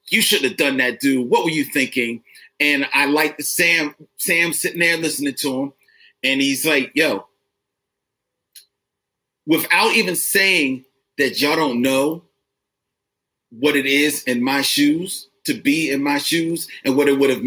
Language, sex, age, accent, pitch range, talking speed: English, male, 40-59, American, 135-170 Hz, 165 wpm